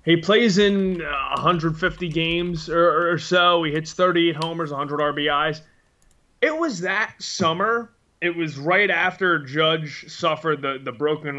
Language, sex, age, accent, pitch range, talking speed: English, male, 20-39, American, 140-180 Hz, 140 wpm